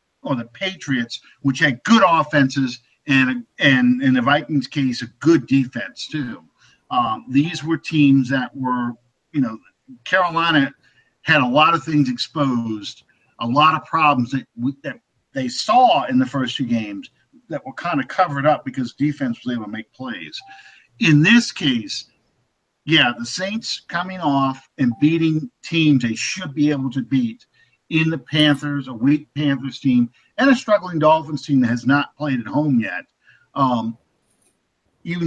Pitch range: 130-165 Hz